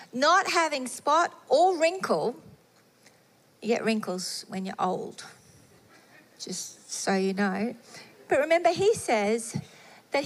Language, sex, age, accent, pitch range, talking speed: English, female, 40-59, Australian, 215-280 Hz, 115 wpm